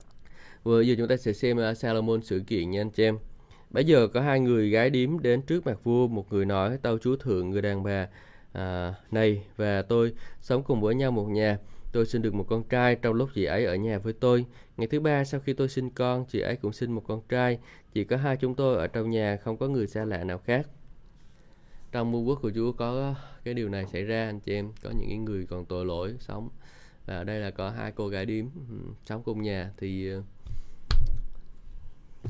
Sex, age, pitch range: male, 20-39, 105-125 Hz